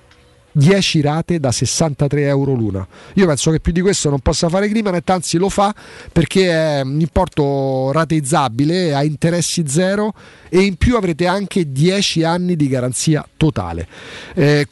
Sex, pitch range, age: male, 140-190 Hz, 40-59